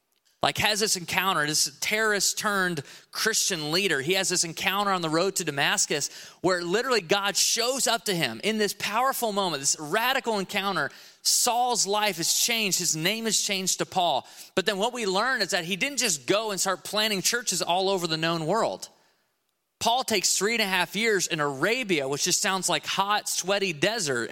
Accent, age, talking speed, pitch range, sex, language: American, 30-49, 190 wpm, 160-205 Hz, male, English